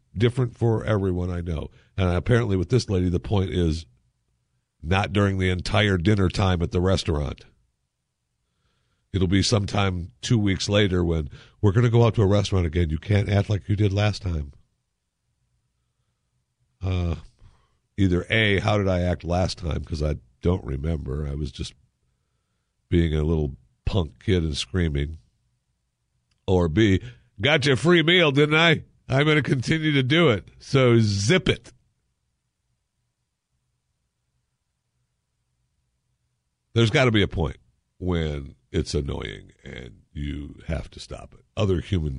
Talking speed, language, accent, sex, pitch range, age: 150 wpm, English, American, male, 80-110 Hz, 50-69